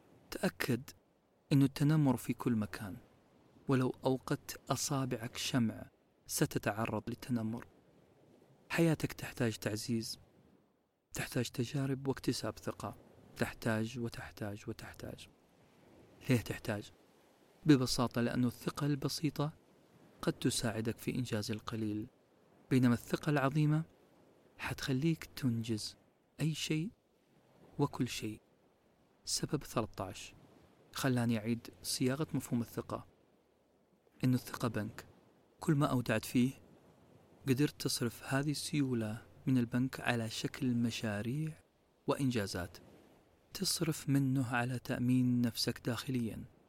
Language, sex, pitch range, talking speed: Arabic, male, 115-135 Hz, 95 wpm